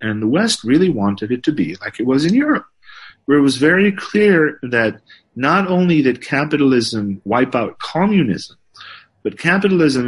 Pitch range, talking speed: 115-170 Hz, 165 wpm